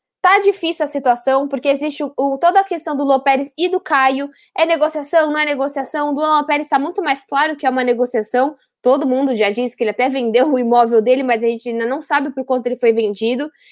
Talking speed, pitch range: 235 wpm, 255-320 Hz